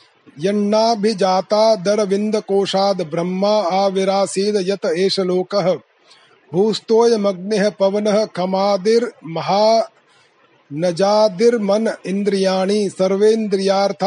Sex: male